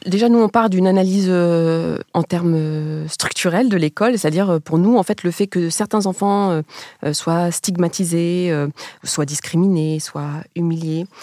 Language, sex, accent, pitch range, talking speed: French, female, French, 155-200 Hz, 160 wpm